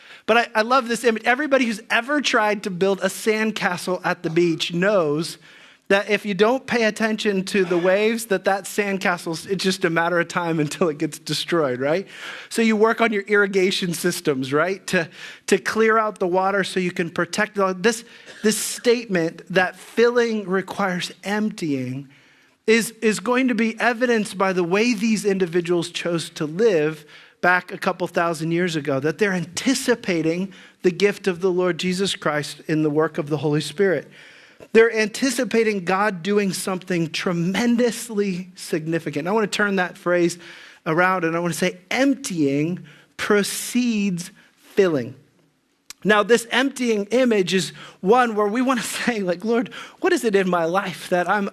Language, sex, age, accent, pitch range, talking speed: English, male, 40-59, American, 175-220 Hz, 170 wpm